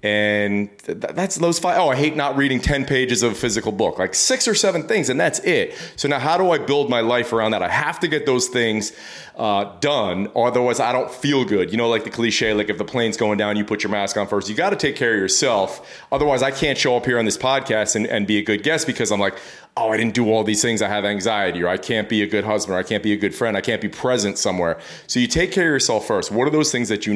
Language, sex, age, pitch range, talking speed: English, male, 30-49, 105-125 Hz, 285 wpm